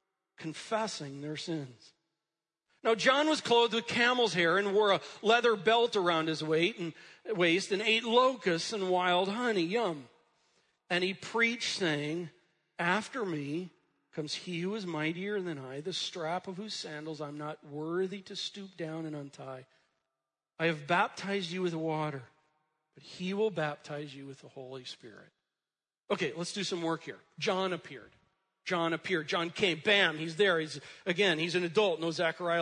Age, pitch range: 40-59, 165-220 Hz